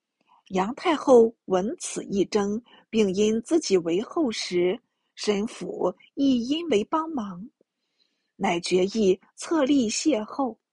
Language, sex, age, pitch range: Chinese, female, 50-69, 195-275 Hz